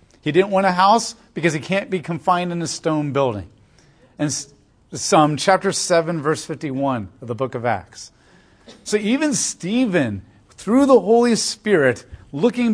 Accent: American